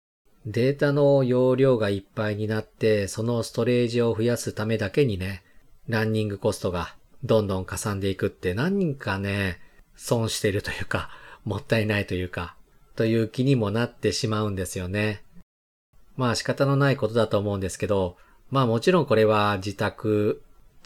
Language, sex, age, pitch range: Japanese, male, 40-59, 95-120 Hz